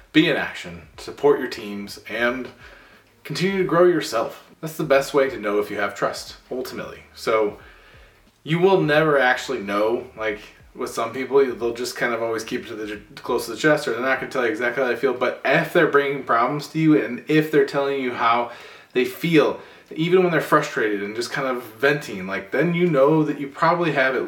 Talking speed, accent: 220 wpm, American